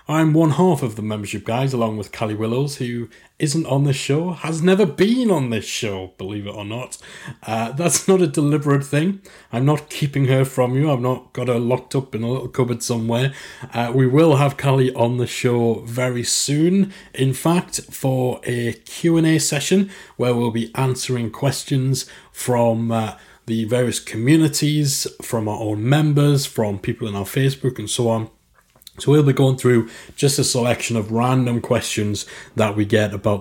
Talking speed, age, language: 185 wpm, 30-49, English